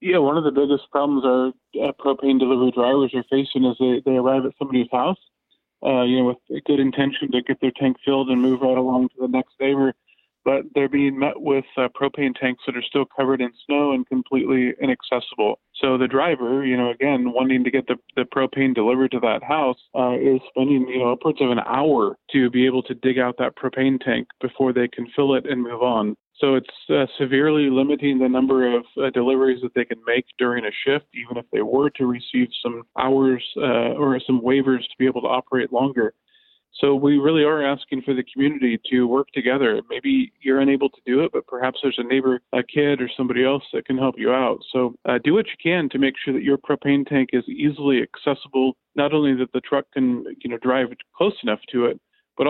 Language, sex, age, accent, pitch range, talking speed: English, male, 20-39, American, 125-140 Hz, 225 wpm